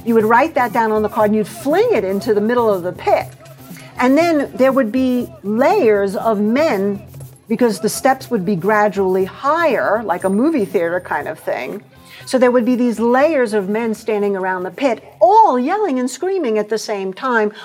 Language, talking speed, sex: English, 205 wpm, female